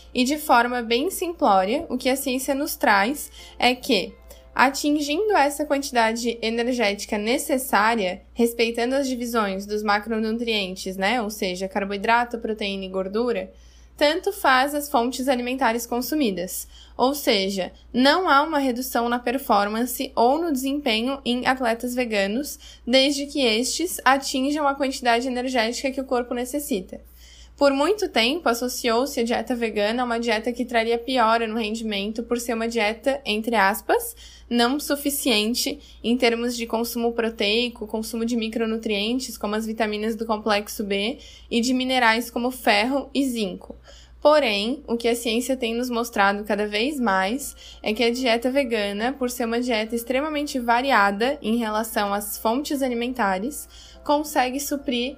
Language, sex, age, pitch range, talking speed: Portuguese, female, 10-29, 225-265 Hz, 145 wpm